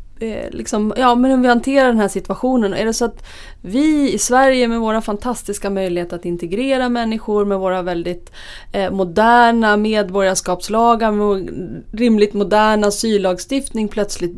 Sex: female